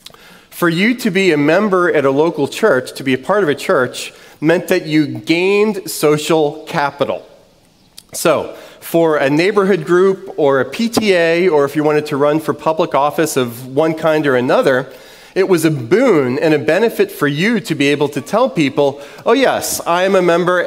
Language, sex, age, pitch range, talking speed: English, male, 40-59, 145-185 Hz, 190 wpm